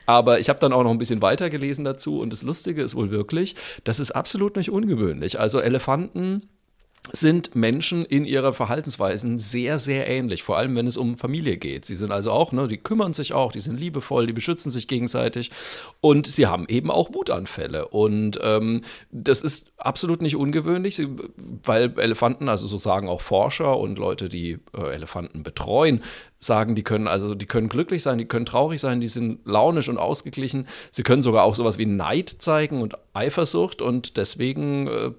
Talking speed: 185 wpm